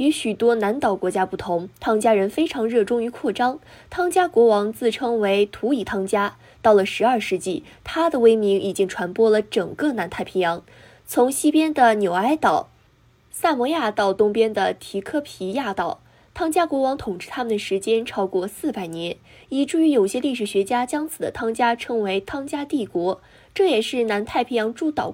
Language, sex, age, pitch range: Chinese, female, 20-39, 195-290 Hz